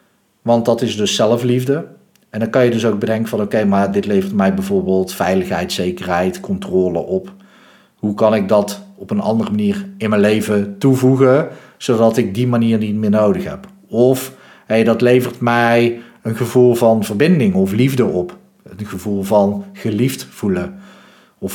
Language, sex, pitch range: Dutch, male, 105-155 Hz